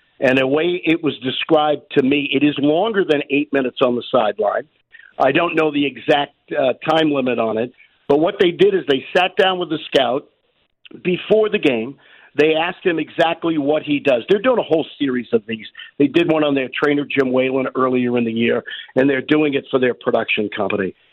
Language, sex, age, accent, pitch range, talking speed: English, male, 50-69, American, 140-180 Hz, 215 wpm